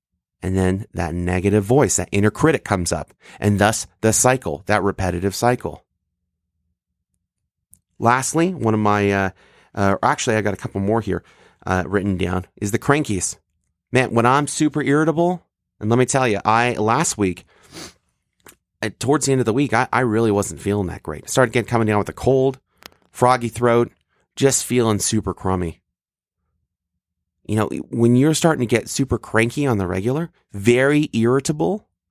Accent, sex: American, male